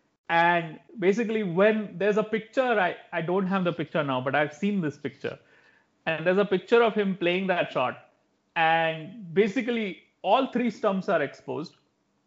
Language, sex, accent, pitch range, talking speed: English, male, Indian, 155-205 Hz, 165 wpm